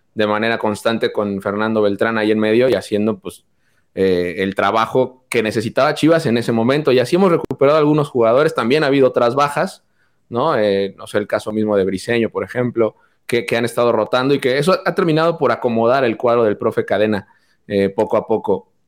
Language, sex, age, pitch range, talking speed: Spanish, male, 20-39, 105-140 Hz, 205 wpm